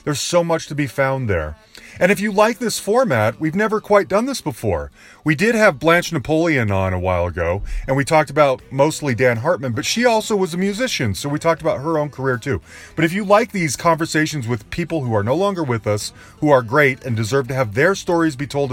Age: 30-49